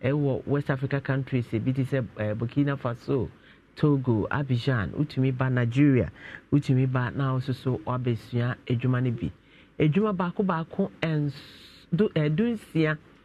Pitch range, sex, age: 125-175 Hz, male, 40-59